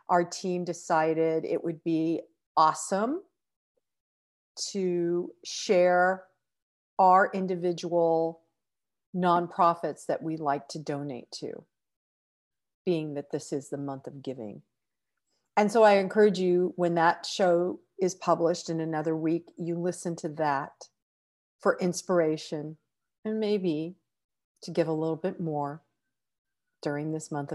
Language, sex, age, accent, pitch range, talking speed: English, female, 40-59, American, 150-185 Hz, 120 wpm